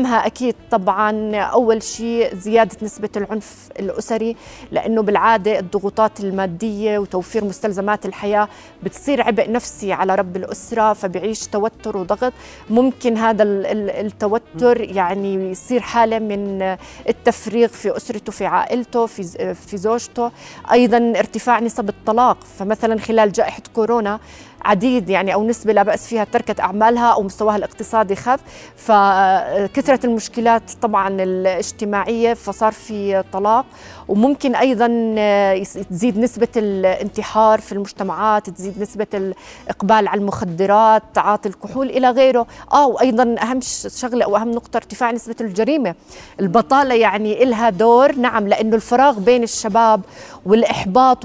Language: Arabic